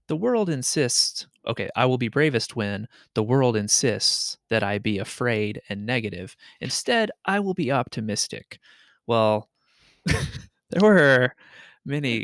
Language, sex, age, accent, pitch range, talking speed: English, male, 20-39, American, 105-125 Hz, 130 wpm